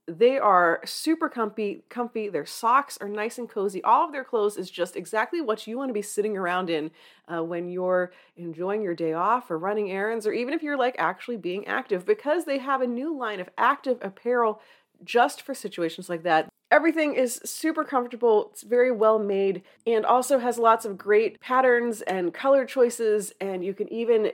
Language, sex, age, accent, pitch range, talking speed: English, female, 30-49, American, 180-250 Hz, 195 wpm